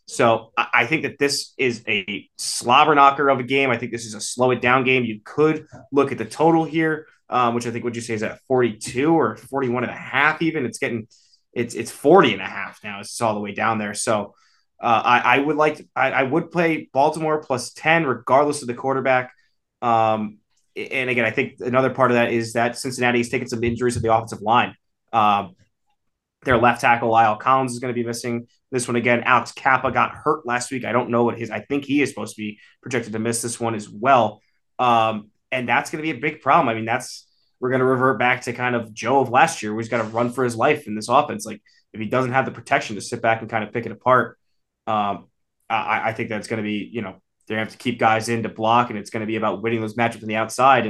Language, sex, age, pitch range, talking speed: English, male, 20-39, 110-130 Hz, 260 wpm